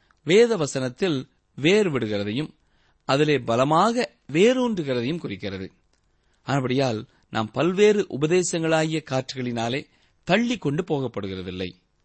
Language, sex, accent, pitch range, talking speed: Tamil, male, native, 115-175 Hz, 70 wpm